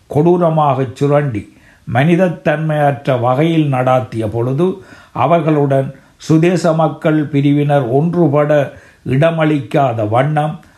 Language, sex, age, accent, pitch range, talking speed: Tamil, male, 60-79, native, 130-155 Hz, 70 wpm